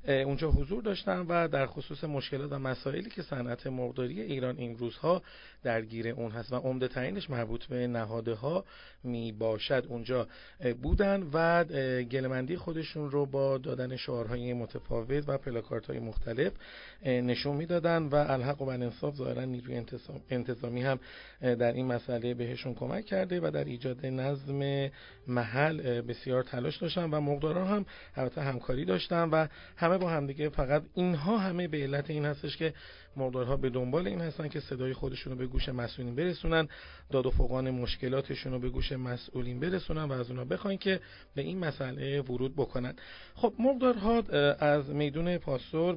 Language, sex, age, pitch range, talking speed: Persian, male, 40-59, 125-150 Hz, 160 wpm